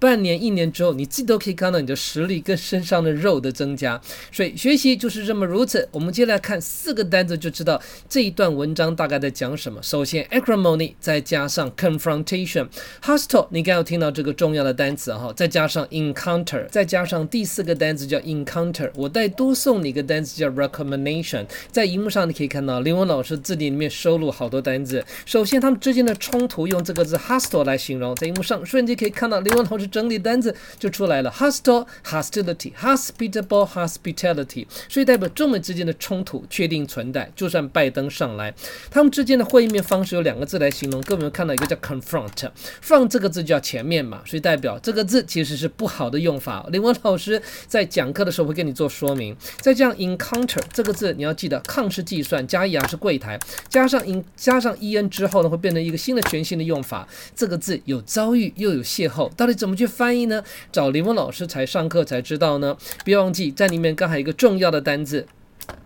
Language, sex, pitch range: English, male, 150-220 Hz